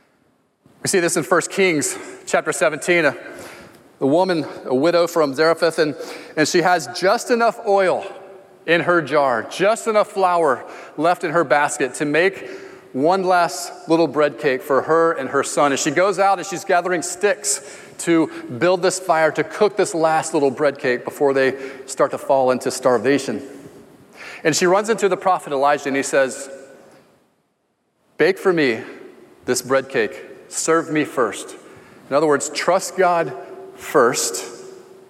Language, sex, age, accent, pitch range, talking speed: English, male, 30-49, American, 145-195 Hz, 155 wpm